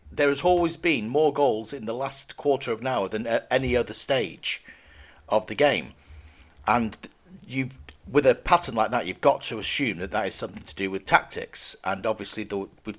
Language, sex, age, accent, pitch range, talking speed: English, male, 40-59, British, 100-145 Hz, 205 wpm